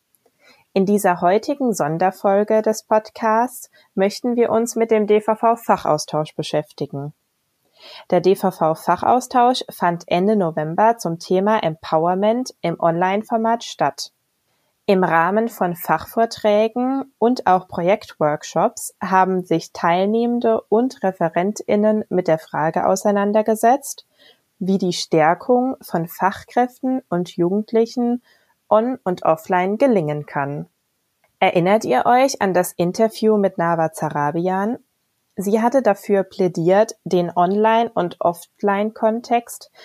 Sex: female